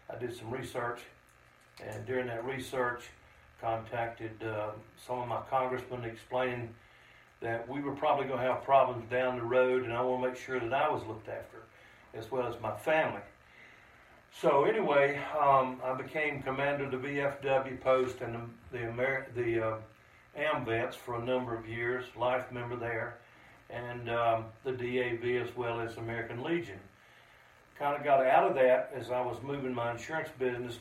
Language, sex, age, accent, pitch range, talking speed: English, male, 60-79, American, 115-130 Hz, 170 wpm